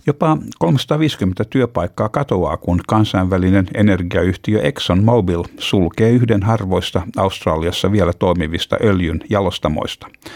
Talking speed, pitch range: 100 wpm, 90-110 Hz